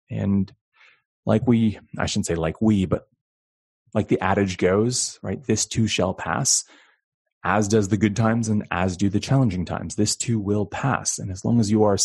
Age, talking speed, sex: 30-49, 195 wpm, male